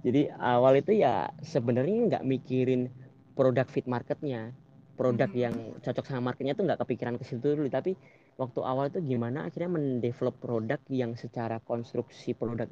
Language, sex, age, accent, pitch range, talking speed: Indonesian, female, 20-39, native, 120-140 Hz, 155 wpm